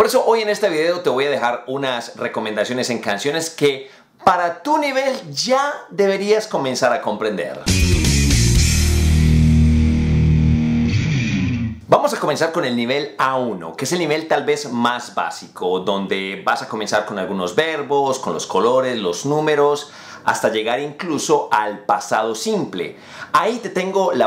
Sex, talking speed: male, 150 wpm